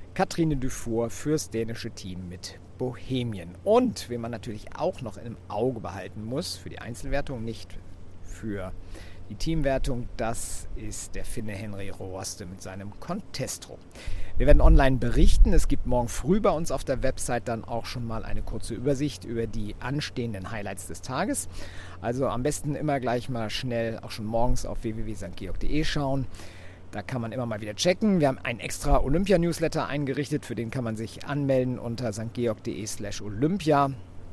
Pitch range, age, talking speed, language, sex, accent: 100-140 Hz, 50-69, 165 wpm, German, male, German